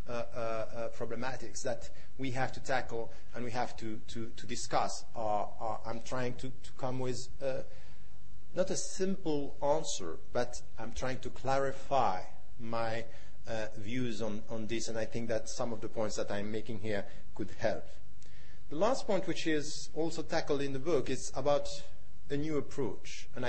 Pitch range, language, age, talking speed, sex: 115-145 Hz, English, 40-59, 175 wpm, male